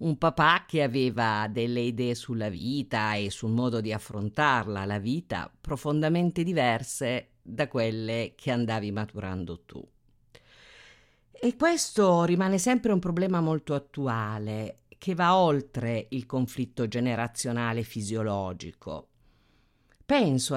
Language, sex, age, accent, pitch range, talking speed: Italian, female, 50-69, native, 115-160 Hz, 115 wpm